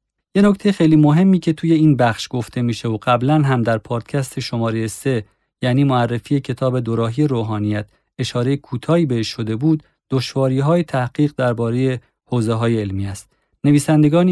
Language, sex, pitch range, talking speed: Persian, male, 115-145 Hz, 145 wpm